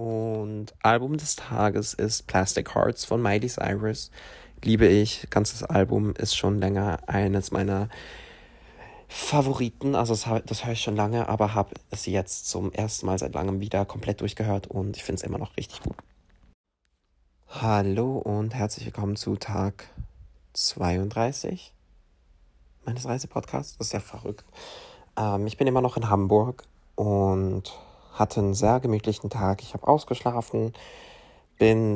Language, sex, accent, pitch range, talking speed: German, male, German, 95-115 Hz, 145 wpm